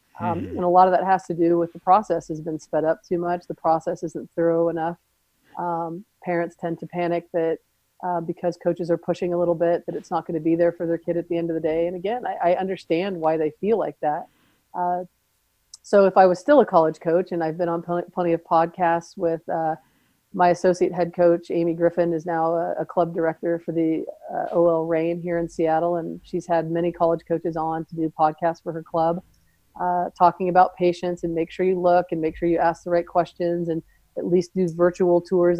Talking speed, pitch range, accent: 230 wpm, 165-180 Hz, American